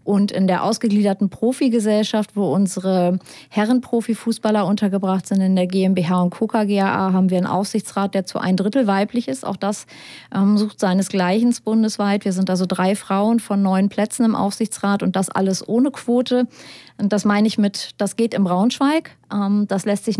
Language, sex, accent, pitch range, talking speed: German, female, German, 185-210 Hz, 180 wpm